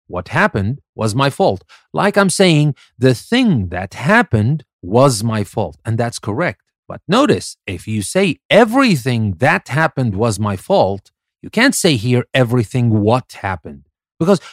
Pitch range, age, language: 105-150 Hz, 40-59, English